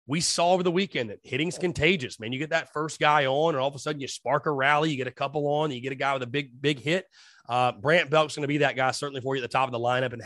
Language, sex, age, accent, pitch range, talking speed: English, male, 30-49, American, 130-160 Hz, 330 wpm